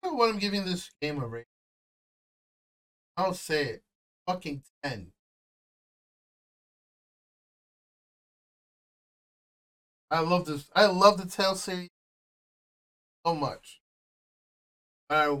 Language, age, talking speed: English, 20-39, 90 wpm